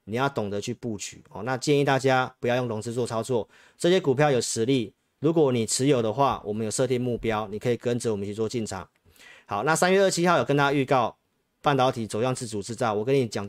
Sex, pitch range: male, 110-140 Hz